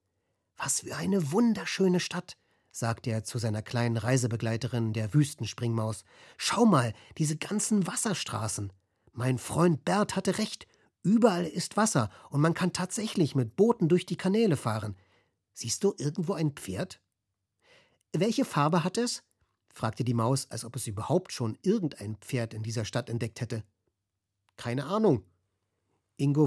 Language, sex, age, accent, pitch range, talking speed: German, male, 40-59, German, 115-175 Hz, 145 wpm